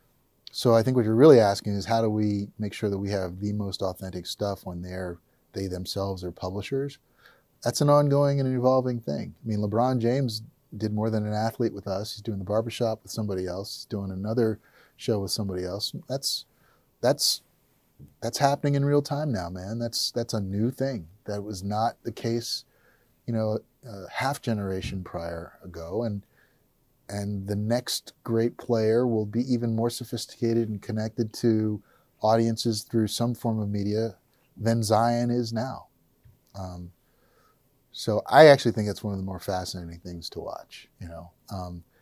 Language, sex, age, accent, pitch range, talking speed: English, male, 30-49, American, 95-120 Hz, 180 wpm